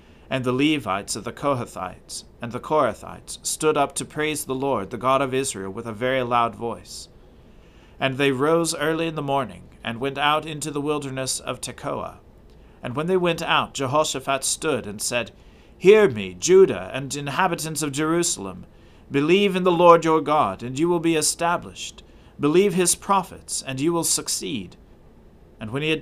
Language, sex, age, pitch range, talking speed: English, male, 40-59, 120-150 Hz, 180 wpm